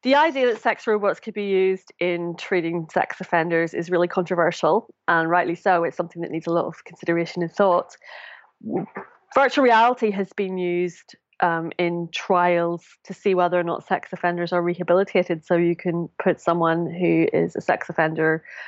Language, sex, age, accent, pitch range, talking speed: English, female, 30-49, British, 165-195 Hz, 175 wpm